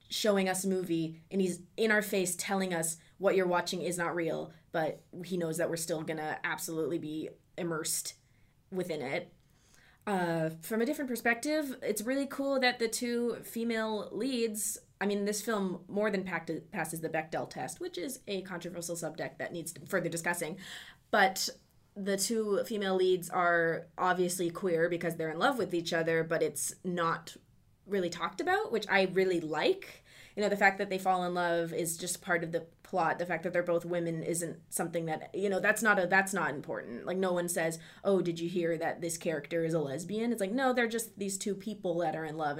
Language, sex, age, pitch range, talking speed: English, female, 20-39, 165-205 Hz, 205 wpm